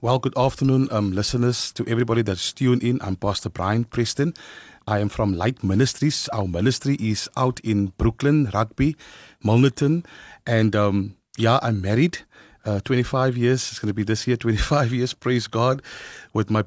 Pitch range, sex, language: 115-150 Hz, male, Chinese